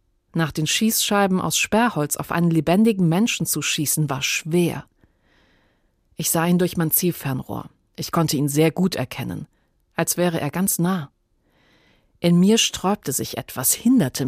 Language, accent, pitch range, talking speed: German, German, 145-185 Hz, 150 wpm